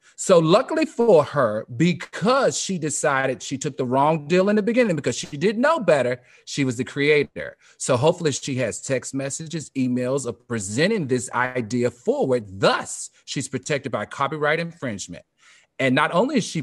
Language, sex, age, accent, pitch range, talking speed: English, male, 40-59, American, 120-155 Hz, 170 wpm